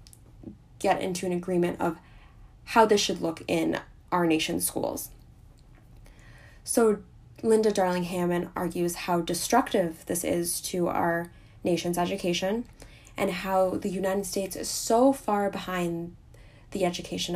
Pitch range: 170-195 Hz